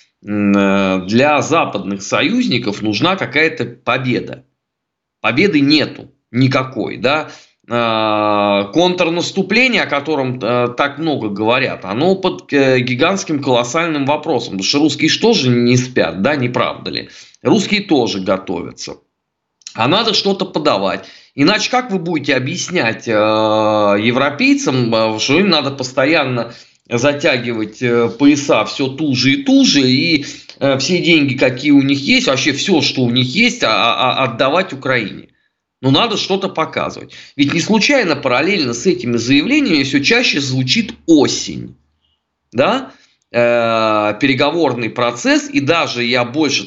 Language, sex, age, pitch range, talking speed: Russian, male, 20-39, 115-175 Hz, 120 wpm